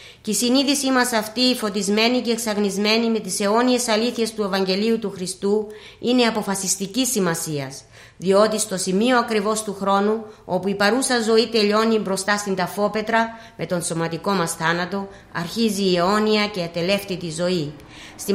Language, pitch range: Greek, 180-220 Hz